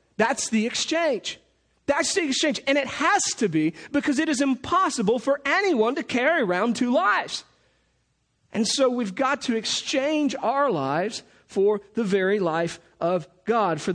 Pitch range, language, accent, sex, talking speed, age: 165-225 Hz, English, American, male, 160 wpm, 40-59